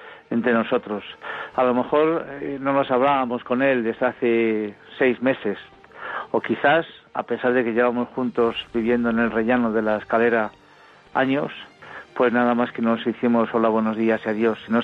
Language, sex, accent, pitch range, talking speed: Spanish, male, Spanish, 115-125 Hz, 175 wpm